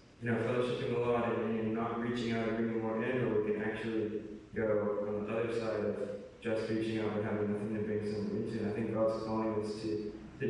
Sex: male